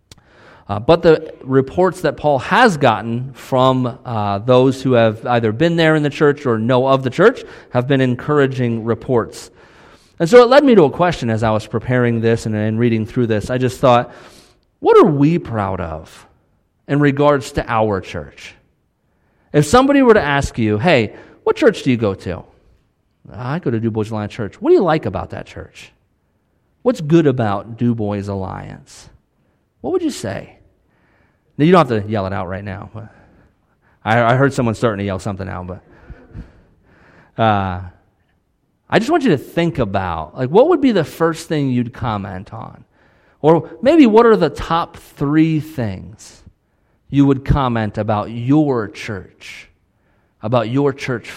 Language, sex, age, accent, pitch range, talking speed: English, male, 40-59, American, 105-155 Hz, 175 wpm